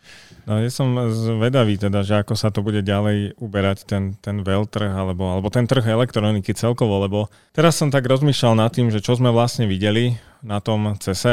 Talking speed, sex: 195 wpm, male